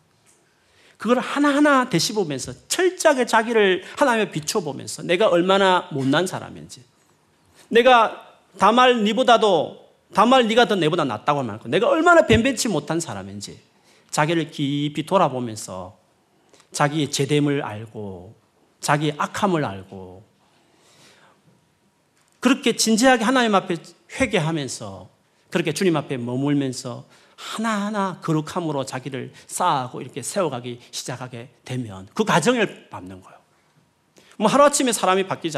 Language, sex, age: Korean, male, 40-59